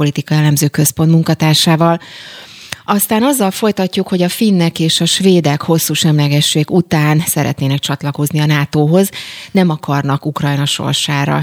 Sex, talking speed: female, 125 wpm